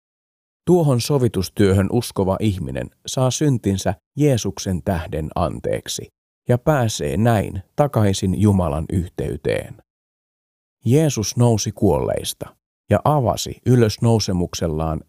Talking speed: 85 wpm